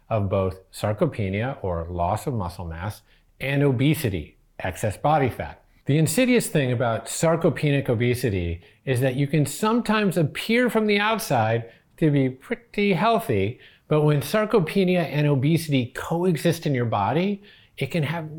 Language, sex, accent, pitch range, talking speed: English, male, American, 105-155 Hz, 145 wpm